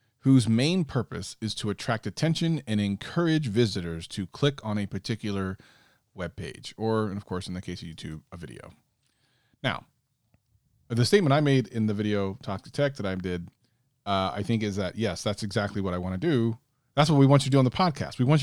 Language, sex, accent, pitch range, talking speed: English, male, American, 100-135 Hz, 215 wpm